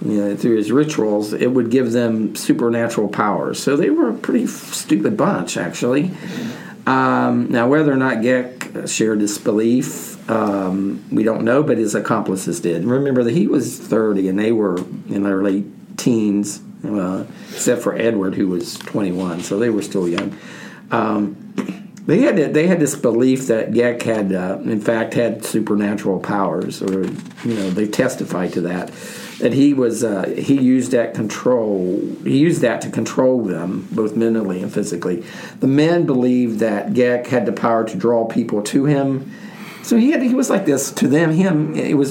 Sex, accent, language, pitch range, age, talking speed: male, American, English, 105-140 Hz, 50-69, 180 wpm